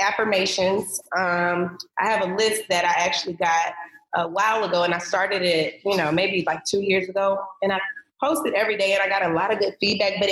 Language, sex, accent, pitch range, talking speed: English, female, American, 180-220 Hz, 220 wpm